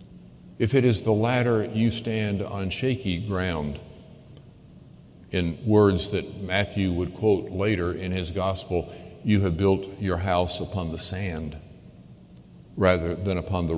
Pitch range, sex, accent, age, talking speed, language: 90-115 Hz, male, American, 50-69, 140 wpm, English